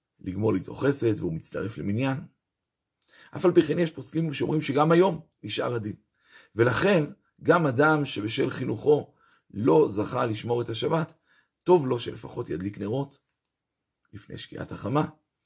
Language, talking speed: Hebrew, 135 wpm